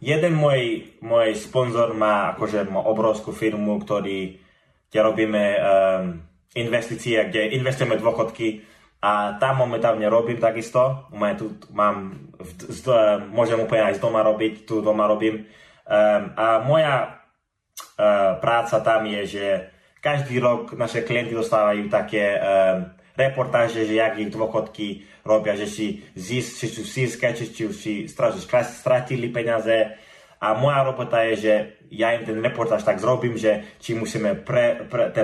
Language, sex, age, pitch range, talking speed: Slovak, male, 20-39, 105-120 Hz, 135 wpm